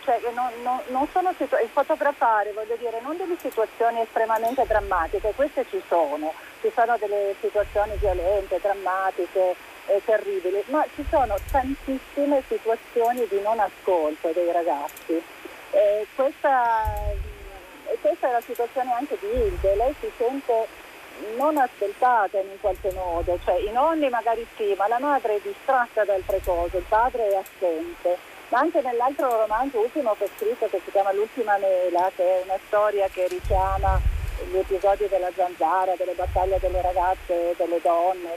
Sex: female